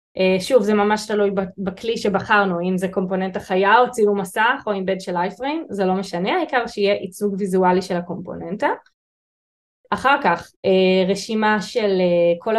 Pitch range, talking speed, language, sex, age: 185-235 Hz, 160 wpm, Hebrew, female, 20-39